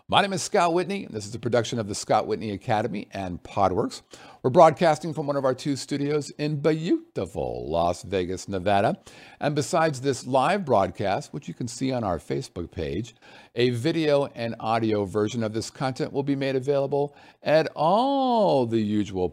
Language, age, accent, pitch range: English, 50-69, American, 100-140 Hz